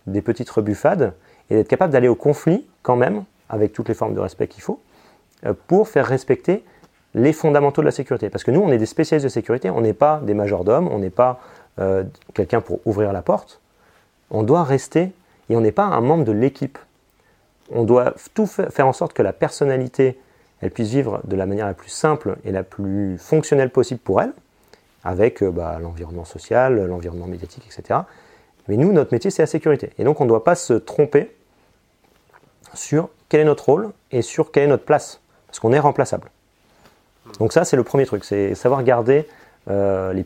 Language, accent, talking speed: French, French, 200 wpm